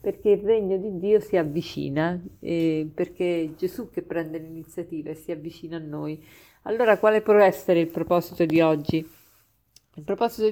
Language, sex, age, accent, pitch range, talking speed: Italian, female, 40-59, native, 170-220 Hz, 155 wpm